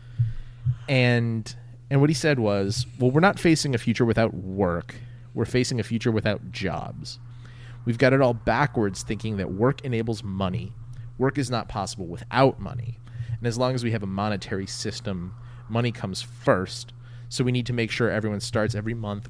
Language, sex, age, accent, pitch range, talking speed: English, male, 30-49, American, 105-120 Hz, 180 wpm